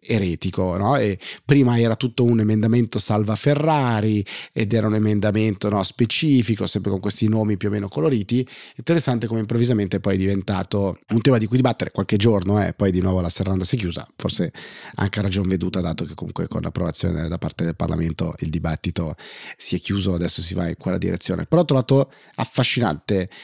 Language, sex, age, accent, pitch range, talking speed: Italian, male, 30-49, native, 95-115 Hz, 195 wpm